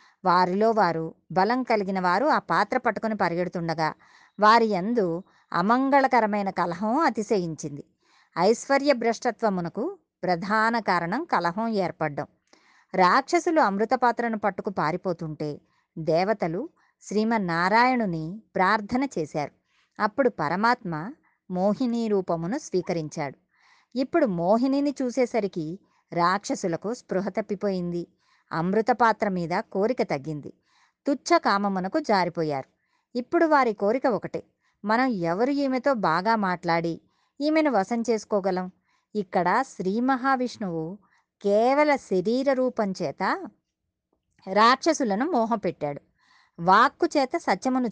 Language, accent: Telugu, native